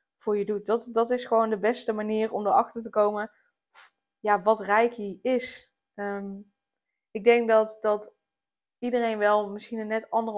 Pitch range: 205-235 Hz